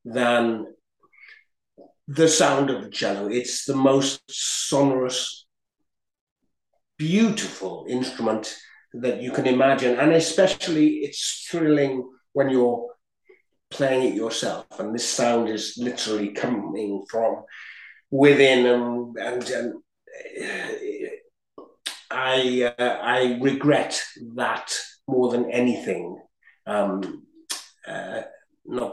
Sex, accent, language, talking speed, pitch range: male, British, English, 100 wpm, 125-175 Hz